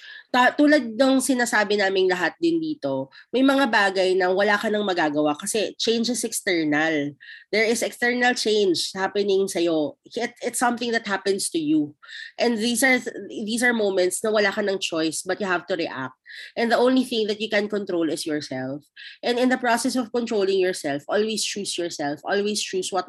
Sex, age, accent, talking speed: female, 20-39, native, 185 wpm